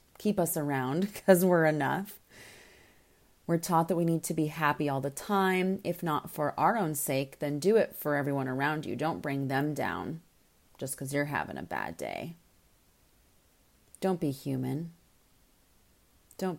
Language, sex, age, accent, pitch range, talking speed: English, female, 30-49, American, 145-190 Hz, 165 wpm